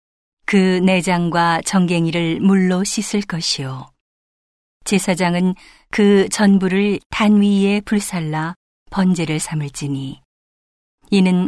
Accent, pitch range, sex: native, 165-200 Hz, female